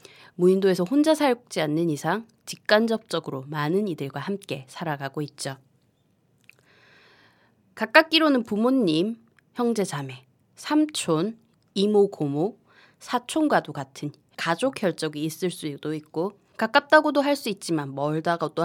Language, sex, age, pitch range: Korean, female, 20-39, 150-210 Hz